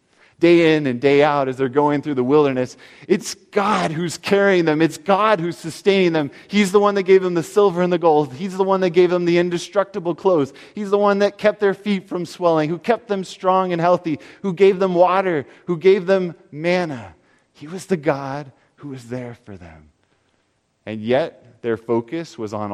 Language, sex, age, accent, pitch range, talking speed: English, male, 30-49, American, 115-180 Hz, 210 wpm